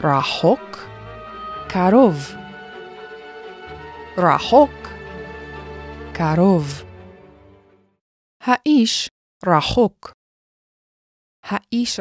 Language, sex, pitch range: Hebrew, female, 150-230 Hz